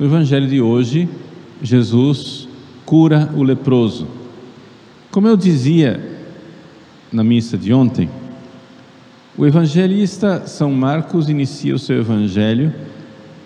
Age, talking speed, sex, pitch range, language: 50-69, 105 wpm, male, 110-145 Hz, Portuguese